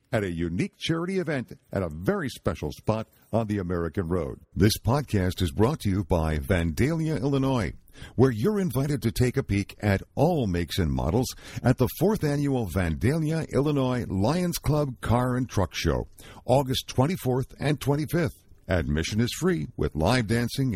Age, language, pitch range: 60-79, English, 95-140 Hz